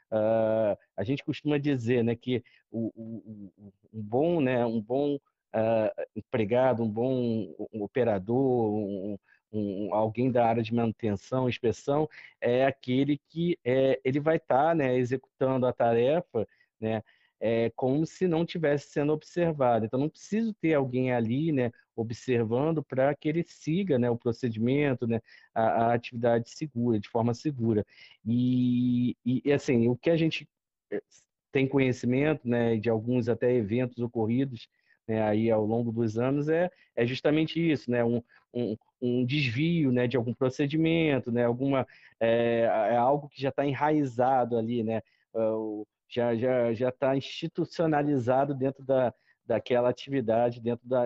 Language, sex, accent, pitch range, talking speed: Portuguese, male, Brazilian, 115-140 Hz, 150 wpm